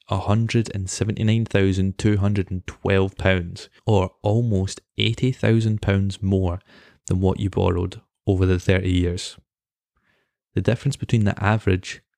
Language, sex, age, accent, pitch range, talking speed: English, male, 20-39, British, 90-105 Hz, 90 wpm